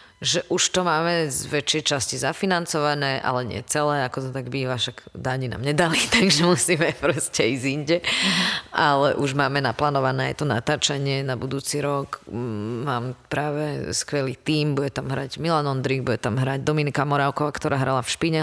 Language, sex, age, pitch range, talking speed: Czech, female, 30-49, 135-150 Hz, 165 wpm